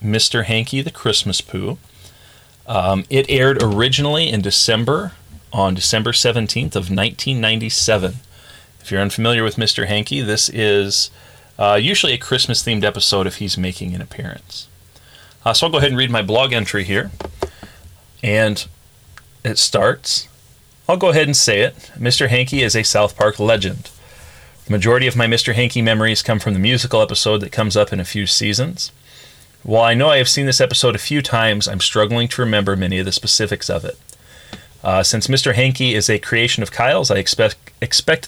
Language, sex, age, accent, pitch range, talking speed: English, male, 30-49, American, 100-120 Hz, 175 wpm